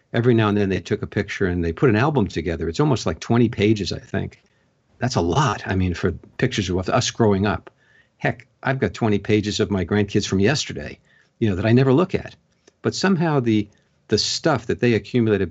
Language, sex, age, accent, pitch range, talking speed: English, male, 50-69, American, 95-130 Hz, 220 wpm